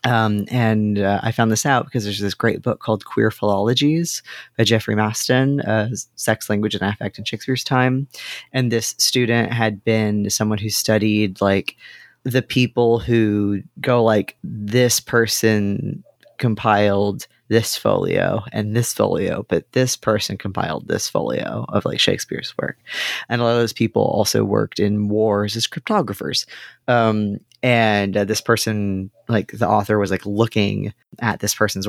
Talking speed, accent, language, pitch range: 160 wpm, American, English, 105-120 Hz